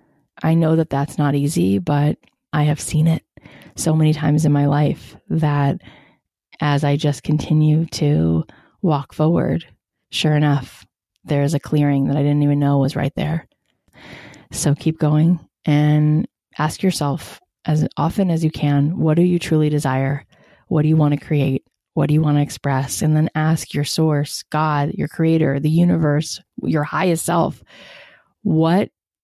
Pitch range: 145-165 Hz